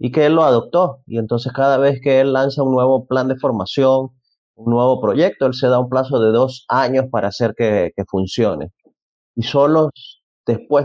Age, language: 30-49, Spanish